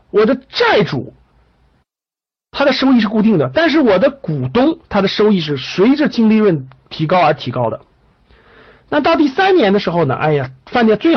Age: 50-69